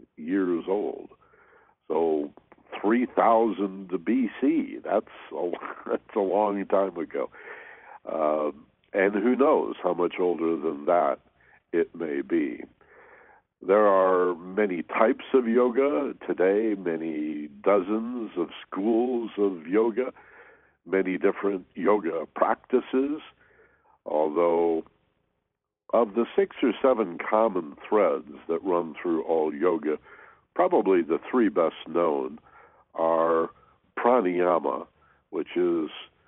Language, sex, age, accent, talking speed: English, male, 60-79, American, 105 wpm